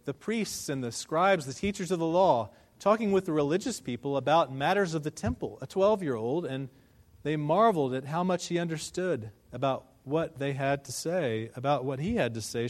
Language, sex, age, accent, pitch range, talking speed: English, male, 40-59, American, 125-175 Hz, 200 wpm